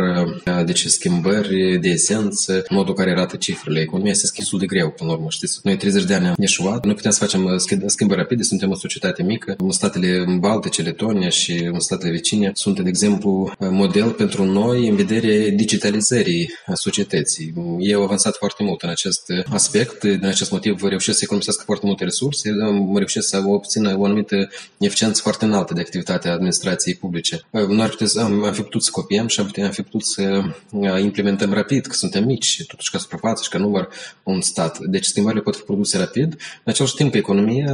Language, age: Romanian, 20-39